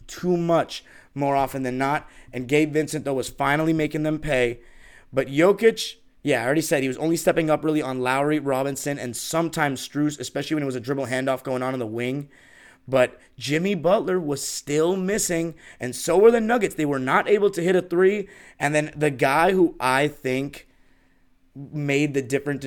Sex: male